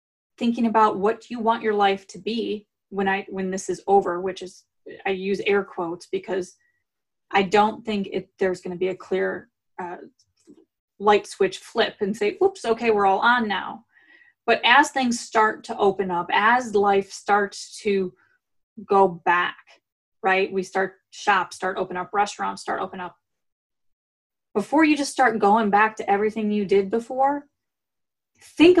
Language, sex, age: English, female, 20-39